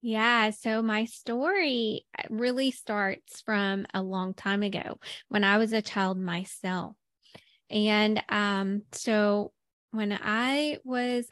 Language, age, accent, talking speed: English, 20-39, American, 120 wpm